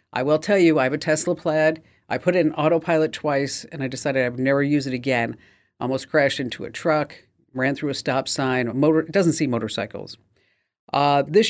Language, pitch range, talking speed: English, 130-165 Hz, 205 wpm